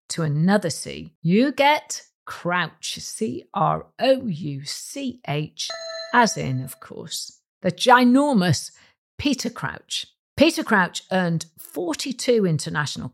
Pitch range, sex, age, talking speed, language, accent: 165-250 Hz, female, 50-69, 90 wpm, English, British